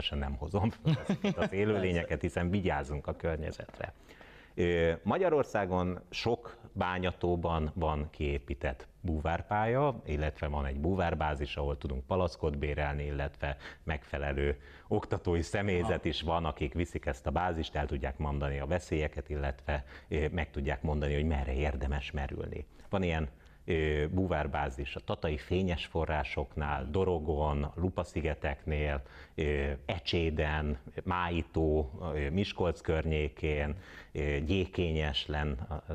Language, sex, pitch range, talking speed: Hungarian, male, 75-90 Hz, 100 wpm